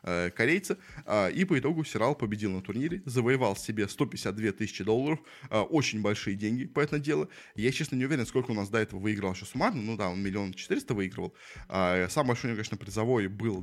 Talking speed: 195 wpm